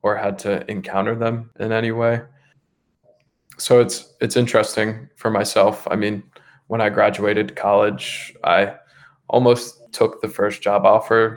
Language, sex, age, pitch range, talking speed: English, male, 20-39, 105-125 Hz, 145 wpm